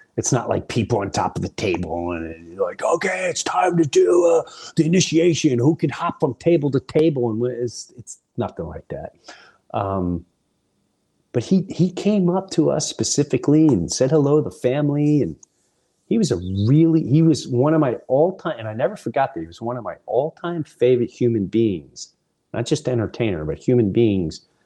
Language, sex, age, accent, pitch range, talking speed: English, male, 30-49, American, 95-150 Hz, 195 wpm